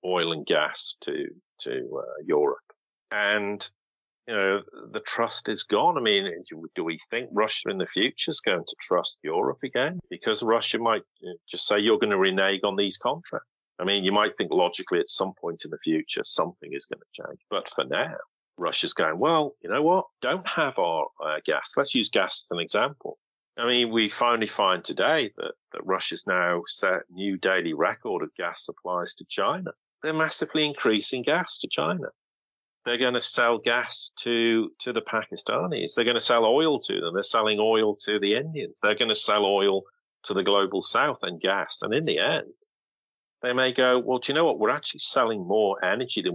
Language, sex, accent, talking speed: English, male, British, 200 wpm